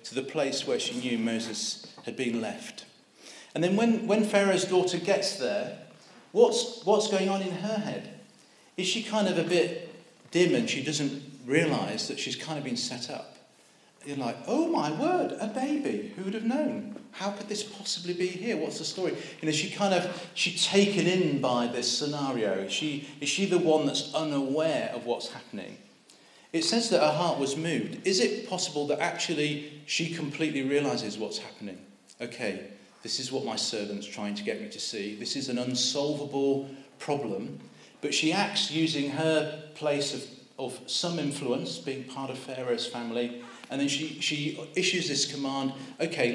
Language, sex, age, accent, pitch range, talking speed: English, male, 40-59, British, 135-185 Hz, 185 wpm